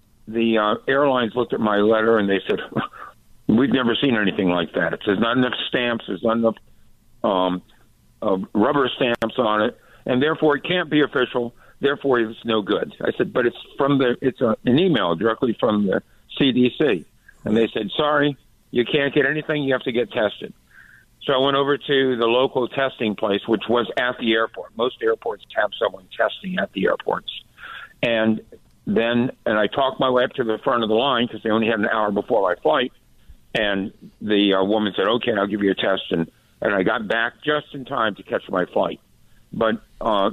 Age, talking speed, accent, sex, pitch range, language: 60-79, 200 wpm, American, male, 110-140 Hz, English